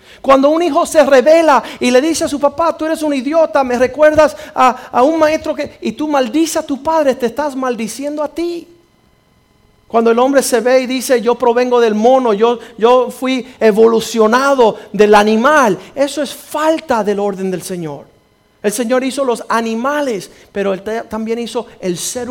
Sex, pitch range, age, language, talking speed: male, 245-310 Hz, 50-69, Spanish, 185 wpm